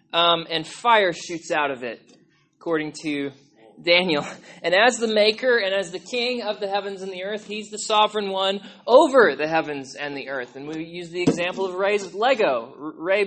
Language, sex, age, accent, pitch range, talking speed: English, male, 20-39, American, 155-215 Hz, 195 wpm